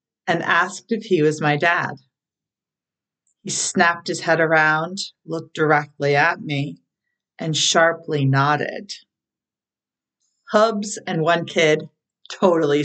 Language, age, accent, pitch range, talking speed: English, 40-59, American, 150-195 Hz, 110 wpm